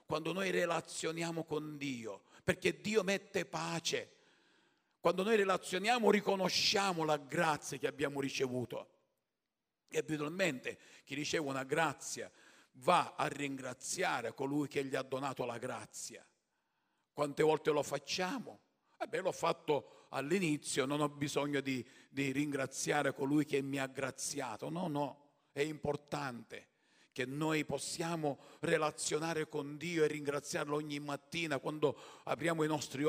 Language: Italian